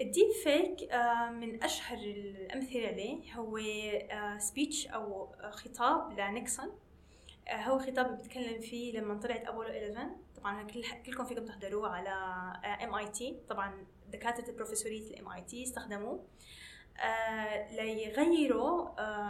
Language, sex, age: Arabic, female, 10-29